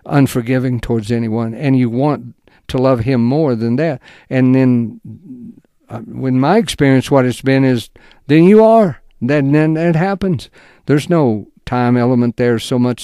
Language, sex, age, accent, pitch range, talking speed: English, male, 60-79, American, 120-150 Hz, 160 wpm